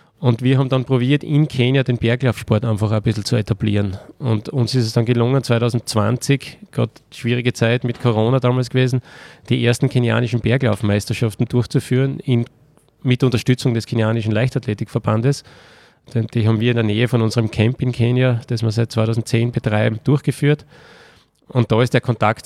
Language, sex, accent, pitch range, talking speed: German, male, Austrian, 115-125 Hz, 160 wpm